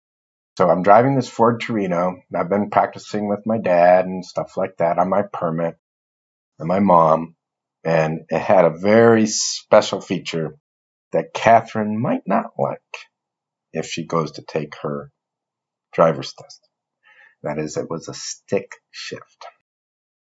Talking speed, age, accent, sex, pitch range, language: 145 wpm, 50-69, American, male, 80-110 Hz, English